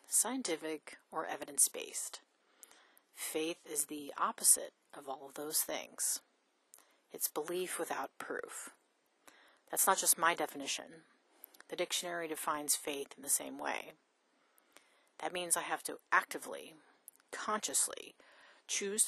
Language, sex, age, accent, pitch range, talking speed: English, female, 30-49, American, 150-200 Hz, 115 wpm